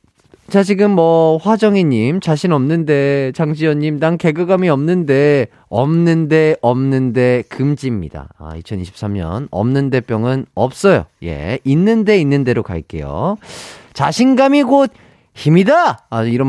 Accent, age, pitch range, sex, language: native, 30-49, 115-185 Hz, male, Korean